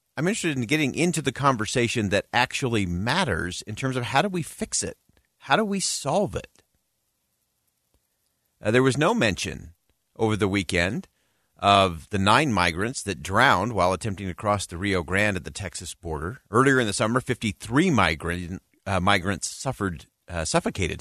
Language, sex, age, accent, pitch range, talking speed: English, male, 40-59, American, 95-130 Hz, 170 wpm